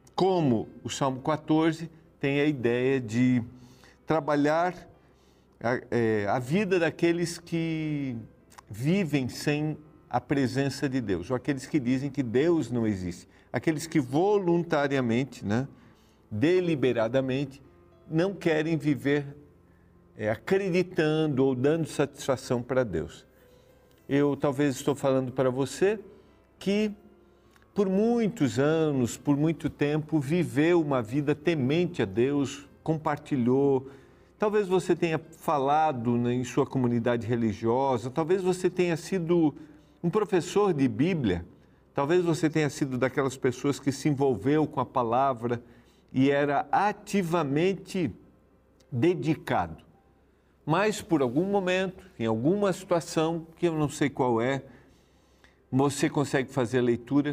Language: Portuguese